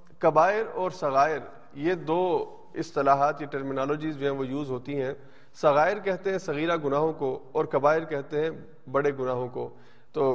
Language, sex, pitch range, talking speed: Urdu, male, 140-165 Hz, 160 wpm